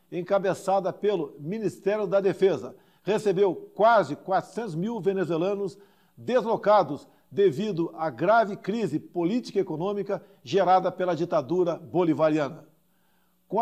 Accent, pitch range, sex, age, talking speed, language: Brazilian, 180-215 Hz, male, 50-69, 100 wpm, Portuguese